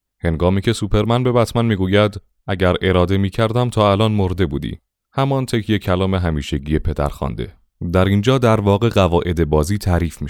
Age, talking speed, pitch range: 30-49, 155 wpm, 85-110 Hz